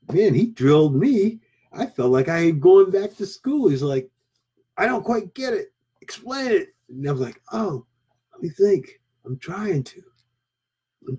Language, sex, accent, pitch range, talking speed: English, male, American, 125-170 Hz, 180 wpm